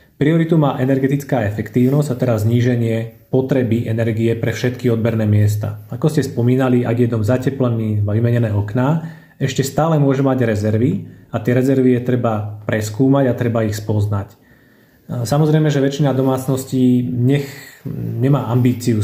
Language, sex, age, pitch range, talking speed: Slovak, male, 30-49, 115-135 Hz, 140 wpm